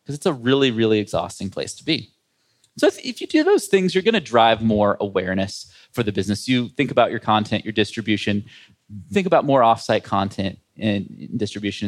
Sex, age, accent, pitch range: male, 20-39, American, 105-135 Hz